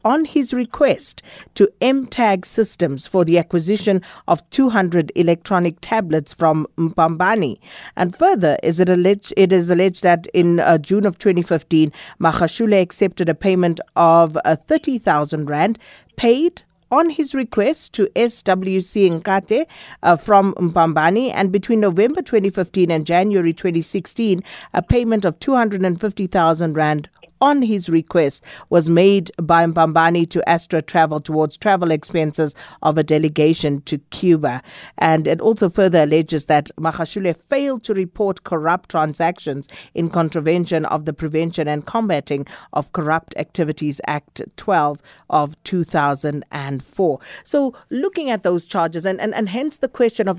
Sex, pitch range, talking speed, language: female, 160-200 Hz, 135 wpm, English